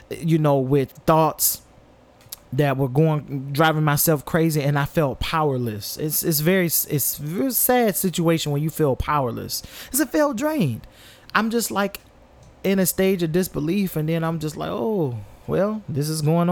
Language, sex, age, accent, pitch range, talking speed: English, male, 30-49, American, 125-165 Hz, 175 wpm